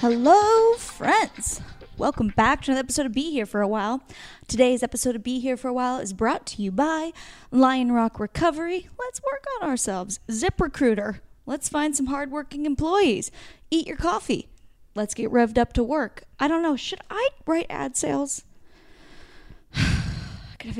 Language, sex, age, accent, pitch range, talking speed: English, female, 10-29, American, 220-290 Hz, 175 wpm